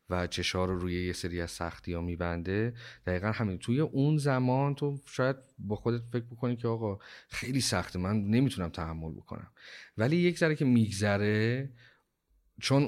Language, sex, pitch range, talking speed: Persian, male, 90-110 Hz, 160 wpm